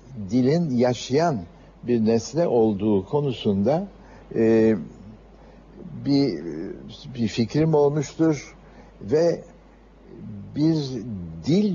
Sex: male